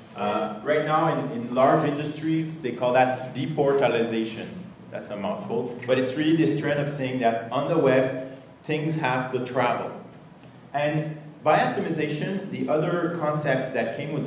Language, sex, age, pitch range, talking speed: French, male, 30-49, 115-155 Hz, 160 wpm